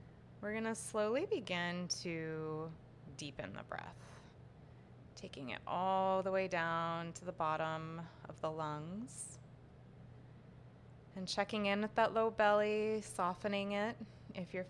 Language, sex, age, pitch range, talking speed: English, female, 20-39, 160-205 Hz, 130 wpm